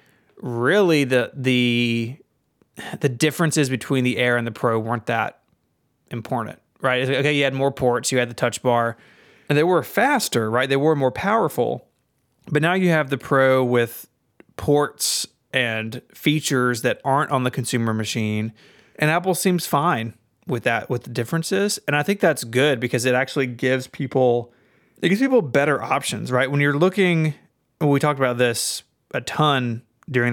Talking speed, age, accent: 170 wpm, 30-49, American